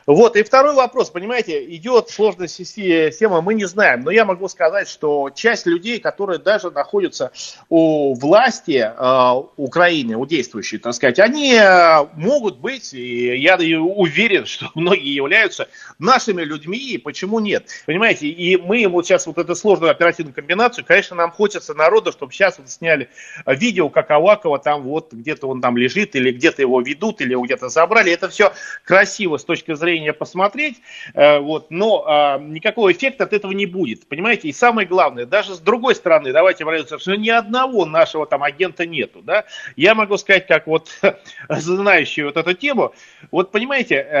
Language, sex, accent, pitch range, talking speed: Russian, male, native, 160-225 Hz, 170 wpm